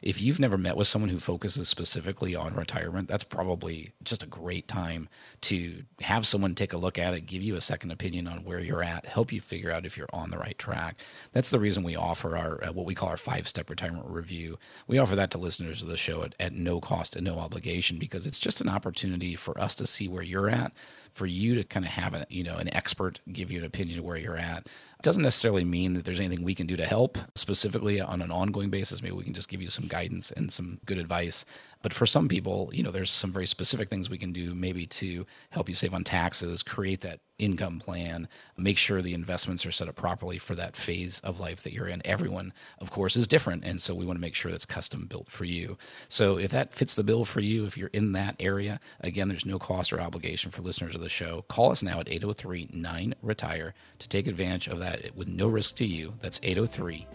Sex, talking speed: male, 240 wpm